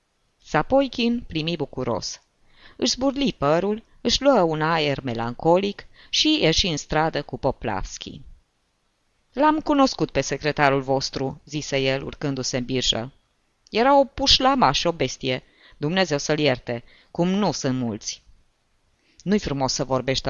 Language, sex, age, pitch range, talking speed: Romanian, female, 20-39, 130-180 Hz, 130 wpm